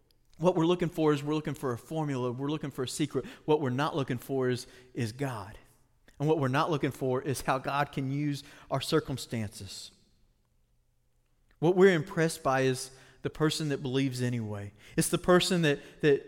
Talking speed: 185 wpm